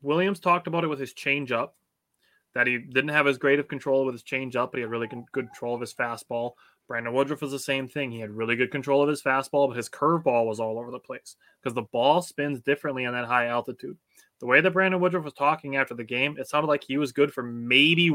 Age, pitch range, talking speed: 20-39, 125-150 Hz, 260 wpm